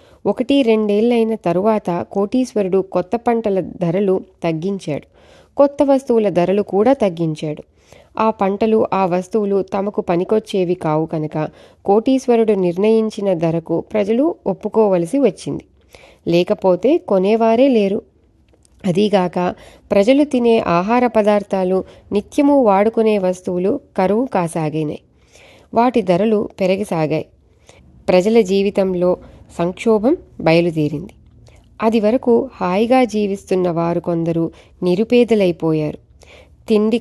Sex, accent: female, native